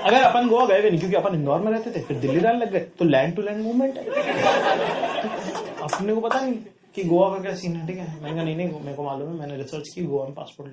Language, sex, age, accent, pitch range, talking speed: English, male, 30-49, Indian, 145-195 Hz, 255 wpm